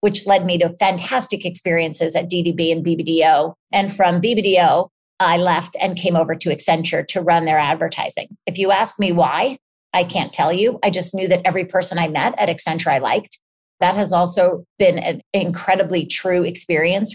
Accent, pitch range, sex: American, 170-200 Hz, female